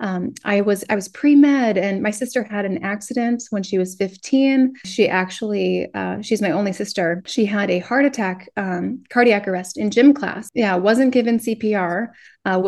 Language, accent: English, American